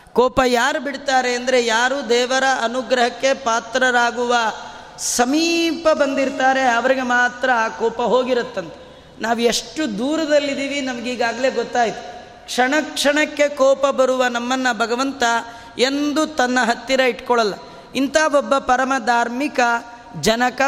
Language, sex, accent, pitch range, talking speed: Kannada, female, native, 235-275 Hz, 100 wpm